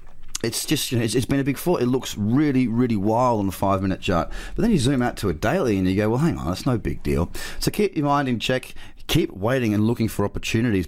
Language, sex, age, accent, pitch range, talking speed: English, male, 30-49, Australian, 90-120 Hz, 265 wpm